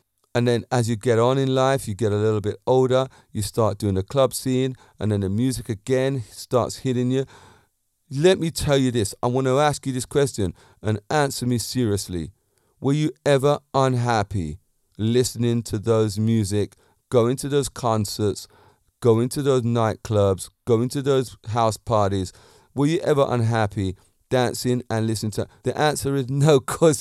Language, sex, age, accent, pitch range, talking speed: English, male, 30-49, British, 105-135 Hz, 175 wpm